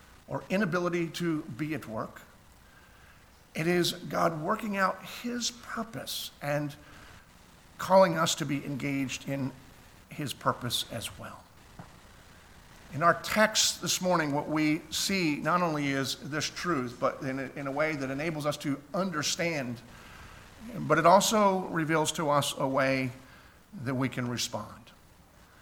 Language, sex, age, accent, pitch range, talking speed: English, male, 50-69, American, 135-180 Hz, 140 wpm